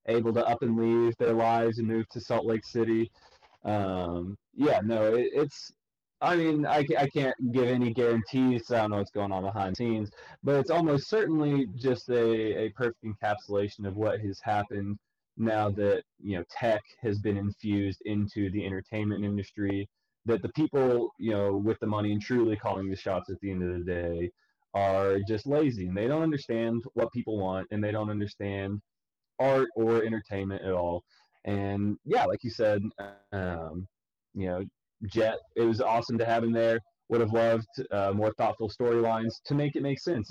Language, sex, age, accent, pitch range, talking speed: English, male, 20-39, American, 105-125 Hz, 190 wpm